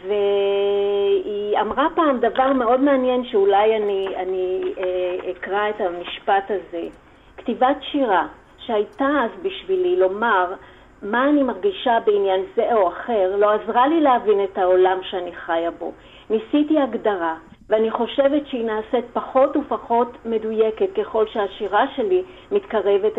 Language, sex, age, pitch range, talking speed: Hebrew, female, 40-59, 190-250 Hz, 125 wpm